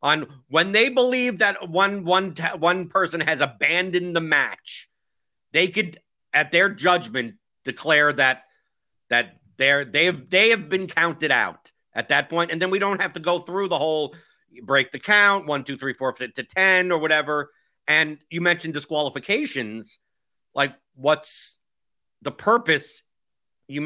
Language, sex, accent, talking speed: English, male, American, 160 wpm